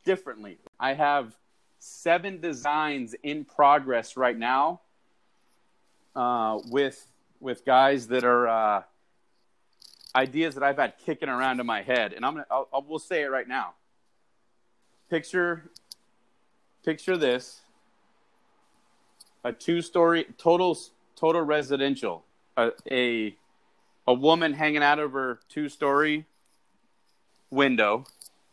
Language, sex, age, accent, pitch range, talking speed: English, male, 30-49, American, 120-150 Hz, 110 wpm